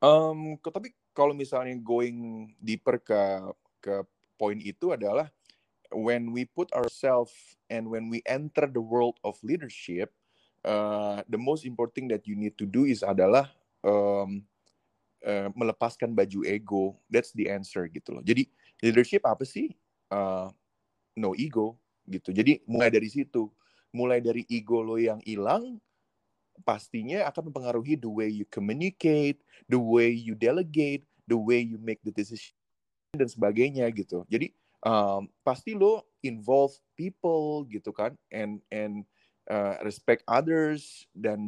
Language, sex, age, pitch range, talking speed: English, male, 30-49, 105-140 Hz, 140 wpm